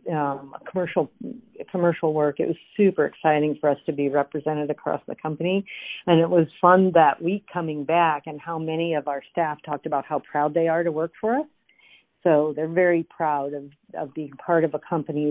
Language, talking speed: English, 200 wpm